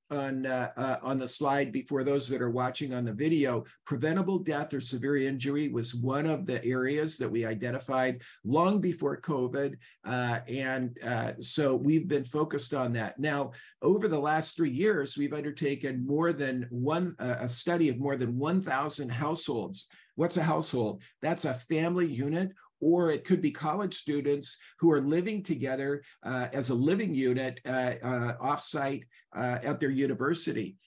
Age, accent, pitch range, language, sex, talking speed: 50-69, American, 125-150 Hz, English, male, 170 wpm